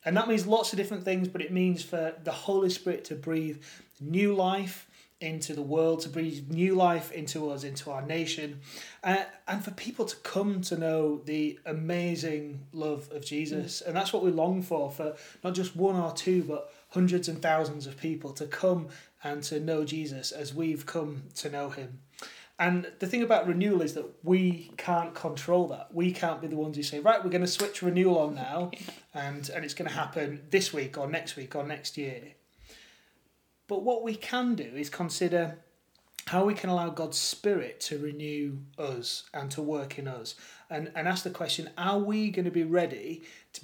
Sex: male